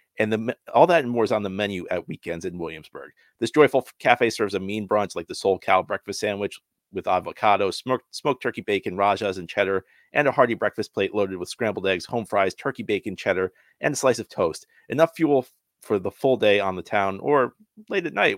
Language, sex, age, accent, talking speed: English, male, 40-59, American, 220 wpm